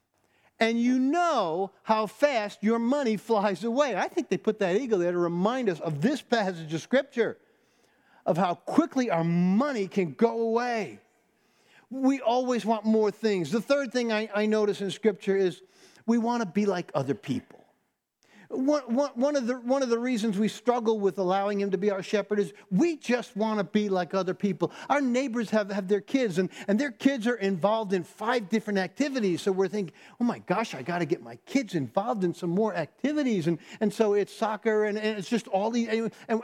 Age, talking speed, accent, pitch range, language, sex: 50-69, 205 wpm, American, 195-240 Hz, English, male